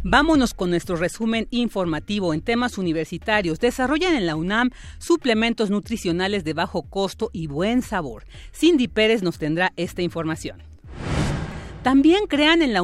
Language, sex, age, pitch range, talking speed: Spanish, female, 40-59, 175-230 Hz, 140 wpm